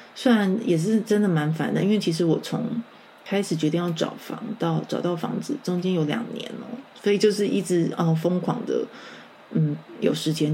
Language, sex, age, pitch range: Chinese, female, 20-39, 160-215 Hz